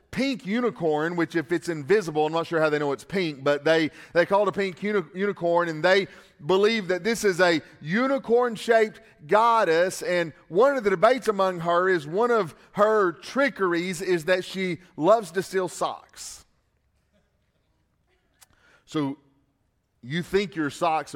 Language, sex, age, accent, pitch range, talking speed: English, male, 40-59, American, 130-180 Hz, 160 wpm